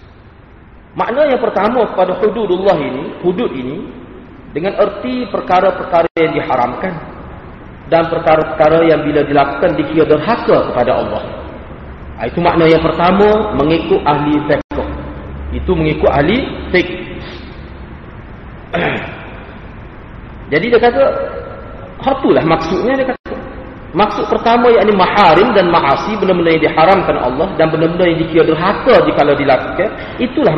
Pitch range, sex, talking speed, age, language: 145-200 Hz, male, 115 wpm, 40-59, Malay